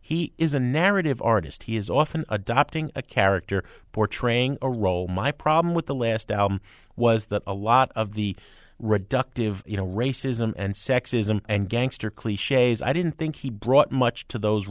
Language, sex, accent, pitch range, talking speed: English, male, American, 100-135 Hz, 175 wpm